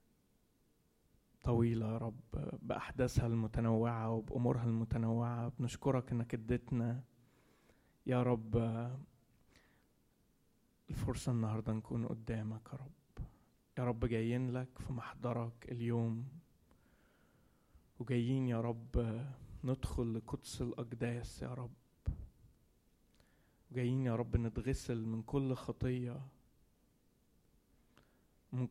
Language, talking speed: Arabic, 85 wpm